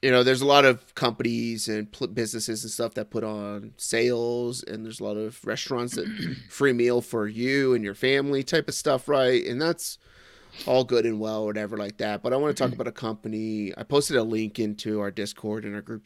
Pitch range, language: 100-115 Hz, English